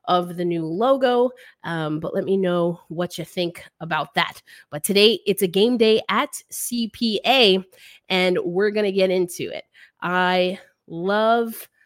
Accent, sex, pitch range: American, female, 180-245 Hz